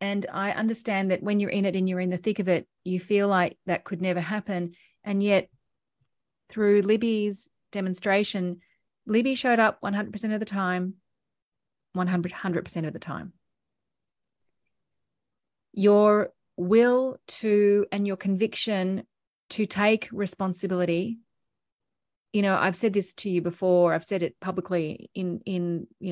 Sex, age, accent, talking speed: female, 30-49, Australian, 140 wpm